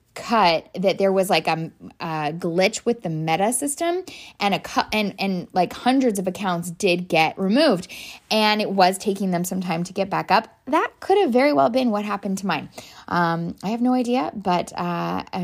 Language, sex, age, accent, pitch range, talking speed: English, female, 10-29, American, 185-235 Hz, 200 wpm